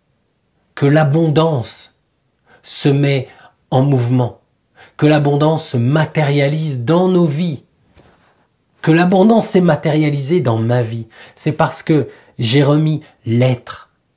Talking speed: 110 wpm